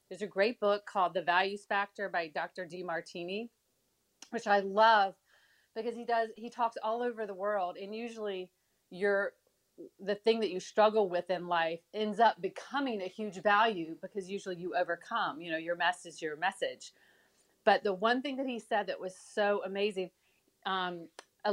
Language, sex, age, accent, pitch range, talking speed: English, female, 40-59, American, 190-240 Hz, 180 wpm